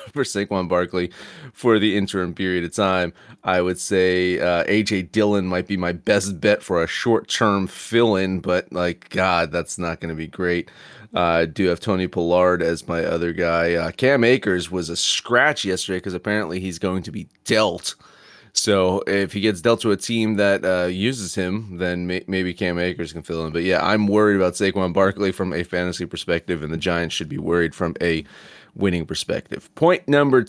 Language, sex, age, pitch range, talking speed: English, male, 30-49, 90-110 Hz, 200 wpm